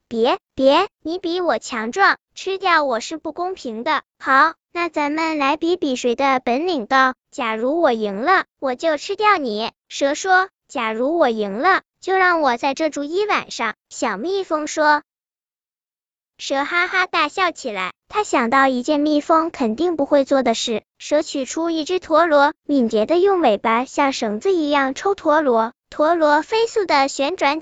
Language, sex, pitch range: Chinese, male, 270-365 Hz